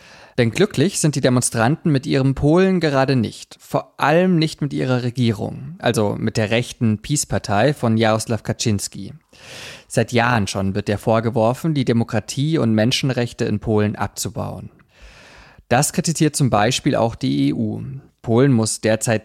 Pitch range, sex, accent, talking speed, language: 110-140 Hz, male, German, 150 wpm, German